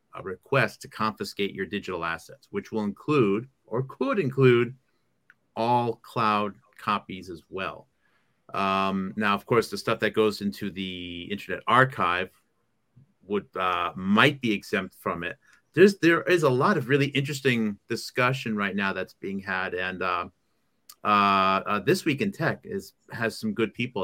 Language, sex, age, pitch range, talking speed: English, male, 40-59, 100-125 Hz, 160 wpm